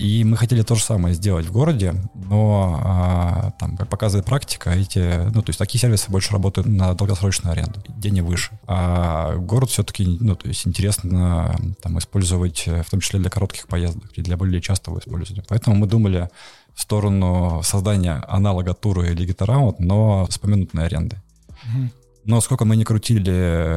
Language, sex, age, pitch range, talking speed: Russian, male, 20-39, 90-105 Hz, 170 wpm